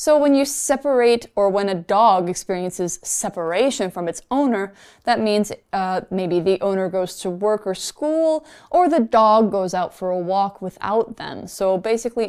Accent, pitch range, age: American, 185-255 Hz, 20-39